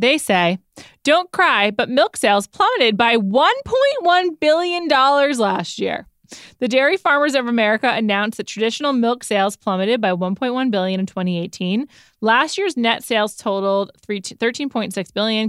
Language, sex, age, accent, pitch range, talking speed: English, female, 20-39, American, 185-245 Hz, 145 wpm